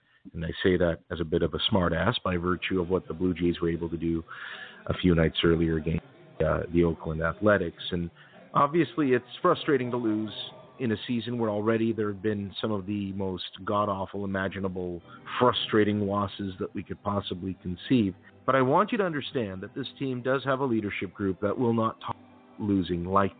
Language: English